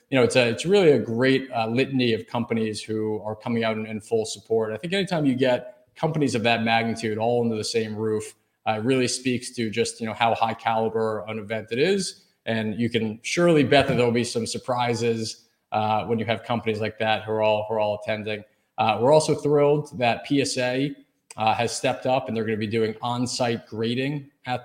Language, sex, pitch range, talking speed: English, male, 110-125 Hz, 220 wpm